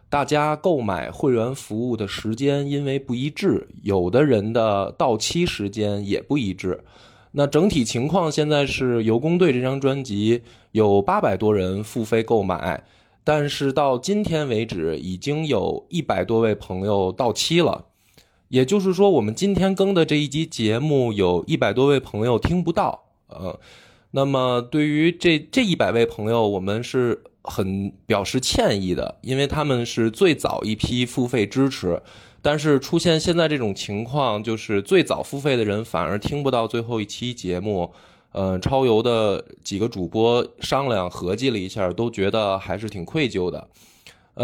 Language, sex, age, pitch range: Chinese, male, 20-39, 105-150 Hz